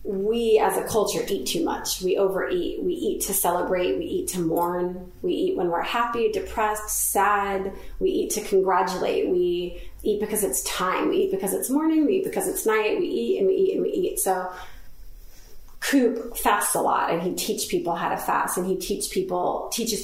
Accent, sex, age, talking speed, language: American, female, 30-49, 205 wpm, English